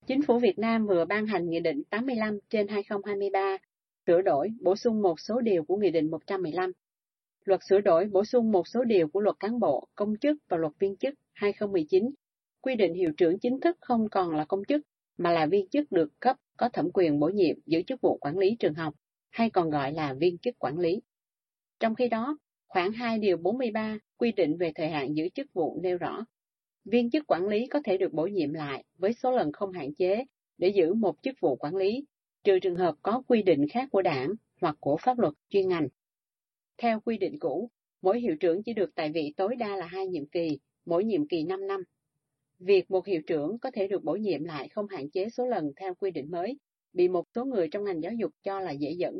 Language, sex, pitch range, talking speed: Vietnamese, female, 175-245 Hz, 225 wpm